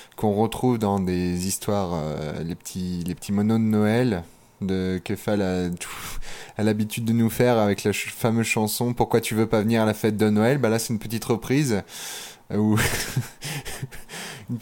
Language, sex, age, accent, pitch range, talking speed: French, male, 20-39, French, 110-130 Hz, 180 wpm